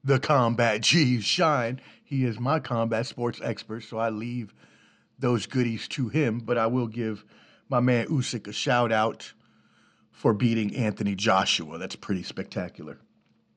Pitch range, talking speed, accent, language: 115-140 Hz, 145 wpm, American, English